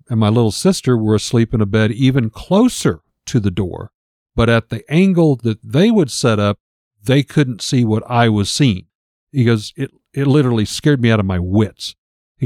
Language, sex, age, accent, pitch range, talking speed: English, male, 50-69, American, 105-135 Hz, 200 wpm